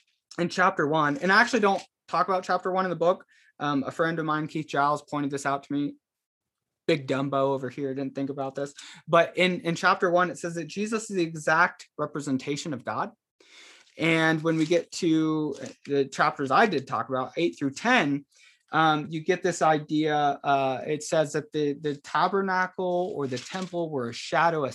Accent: American